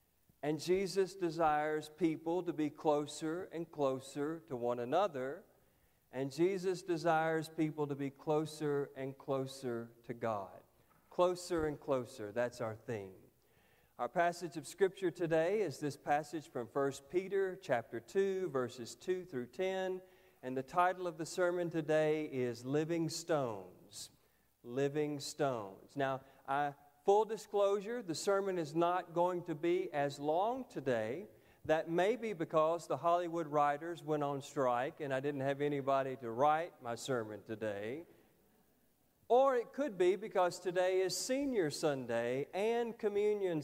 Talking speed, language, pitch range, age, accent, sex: 140 wpm, English, 130-175 Hz, 50-69, American, male